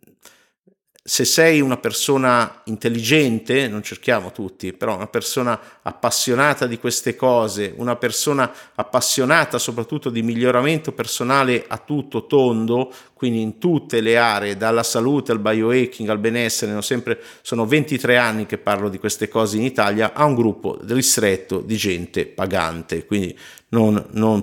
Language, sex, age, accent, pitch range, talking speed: Italian, male, 50-69, native, 100-125 Hz, 140 wpm